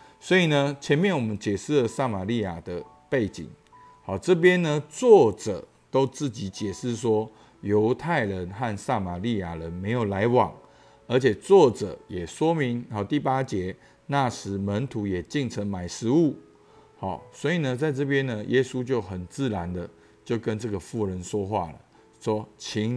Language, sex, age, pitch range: Chinese, male, 50-69, 100-135 Hz